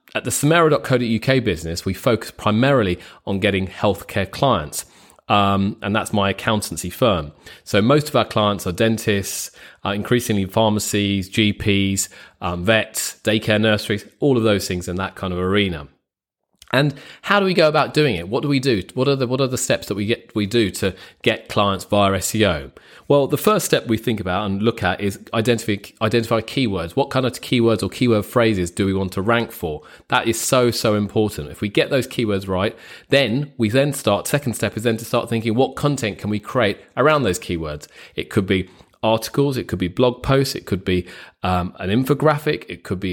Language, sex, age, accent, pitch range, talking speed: English, male, 30-49, British, 100-125 Hz, 200 wpm